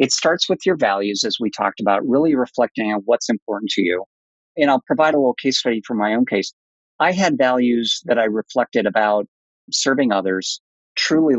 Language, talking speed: English, 195 wpm